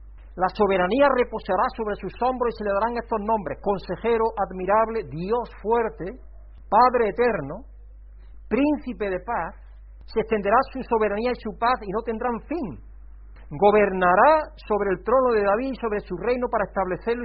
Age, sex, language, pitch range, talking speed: 50-69, male, Spanish, 145-220 Hz, 155 wpm